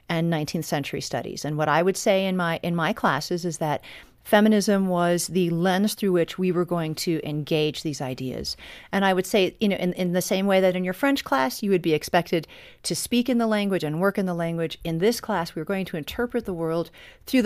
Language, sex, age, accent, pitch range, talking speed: English, female, 40-59, American, 160-195 Hz, 240 wpm